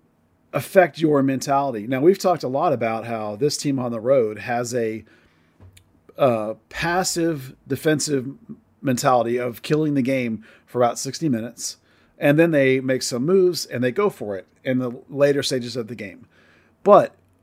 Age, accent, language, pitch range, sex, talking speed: 40-59, American, English, 120-145 Hz, male, 165 wpm